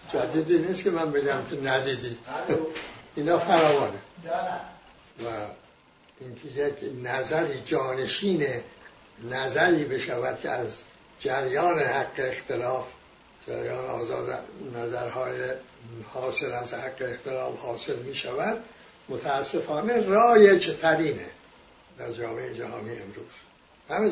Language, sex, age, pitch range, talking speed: English, male, 60-79, 145-190 Hz, 95 wpm